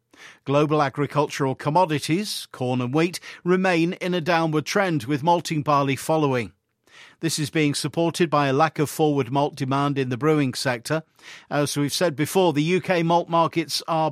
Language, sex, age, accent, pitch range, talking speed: English, male, 50-69, British, 135-165 Hz, 165 wpm